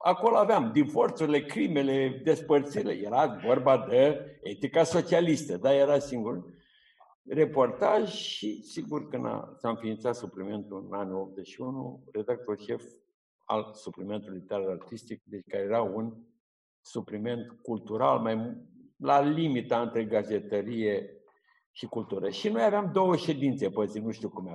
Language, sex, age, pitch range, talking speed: Romanian, male, 60-79, 110-170 Hz, 130 wpm